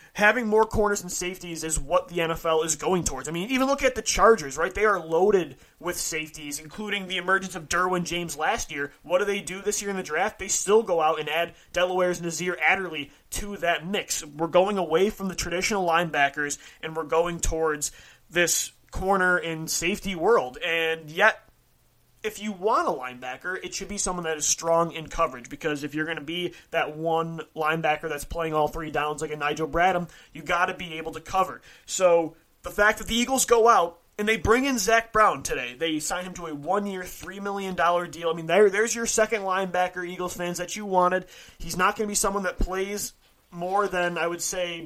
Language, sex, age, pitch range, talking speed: English, male, 30-49, 160-195 Hz, 215 wpm